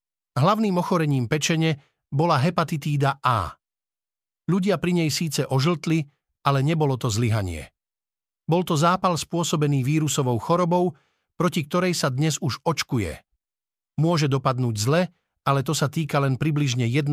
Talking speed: 125 wpm